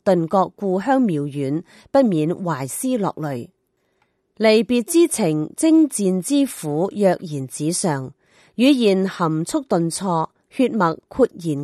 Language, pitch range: Chinese, 160-240 Hz